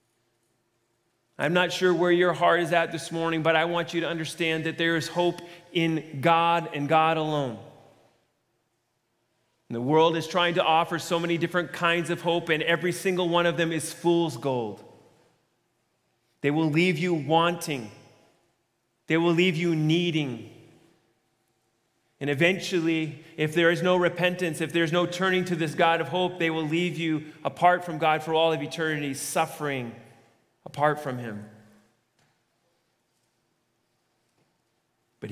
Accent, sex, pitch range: American, male, 120-165 Hz